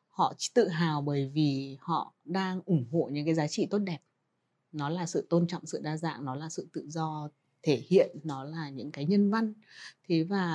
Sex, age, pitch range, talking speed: female, 20-39, 150-195 Hz, 215 wpm